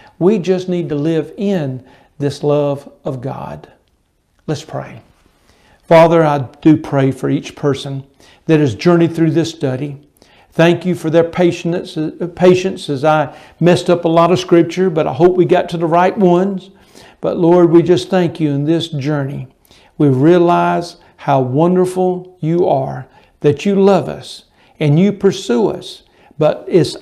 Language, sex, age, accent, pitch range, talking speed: English, male, 60-79, American, 140-180 Hz, 160 wpm